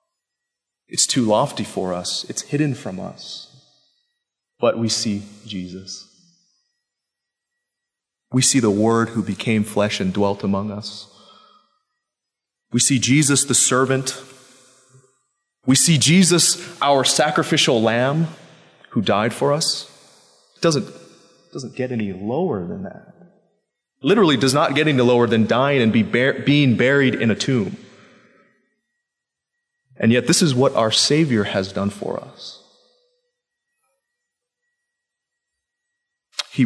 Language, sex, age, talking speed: English, male, 30-49, 125 wpm